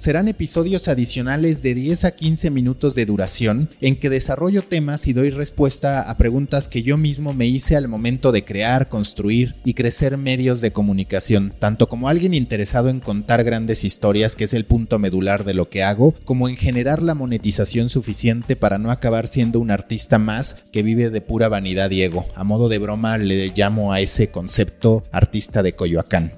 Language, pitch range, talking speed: Spanish, 105-140 Hz, 185 wpm